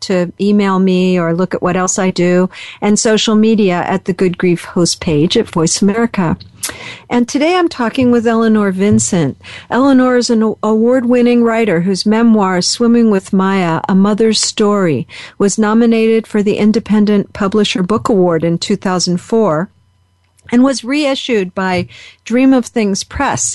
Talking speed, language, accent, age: 155 wpm, English, American, 50-69